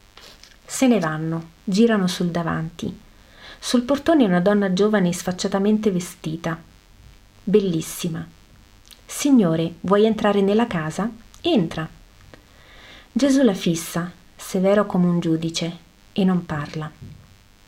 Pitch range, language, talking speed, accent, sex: 165-205 Hz, Italian, 105 wpm, native, female